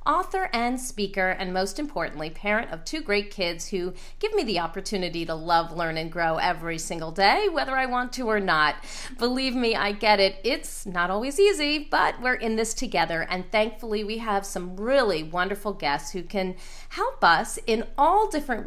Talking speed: 190 wpm